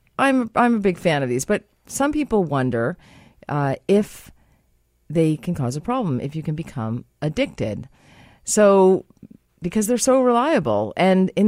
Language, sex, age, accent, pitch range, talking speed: English, female, 40-59, American, 125-195 Hz, 155 wpm